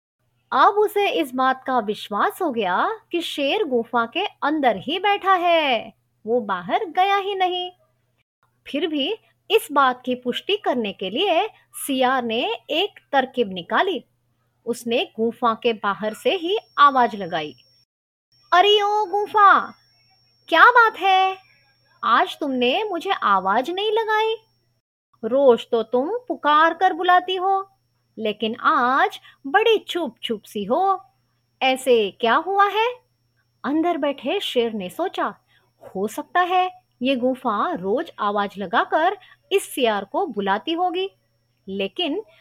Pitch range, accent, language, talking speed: 225-370 Hz, native, Marathi, 115 wpm